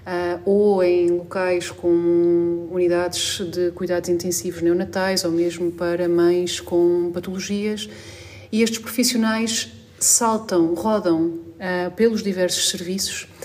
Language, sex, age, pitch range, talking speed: Portuguese, female, 40-59, 170-195 Hz, 105 wpm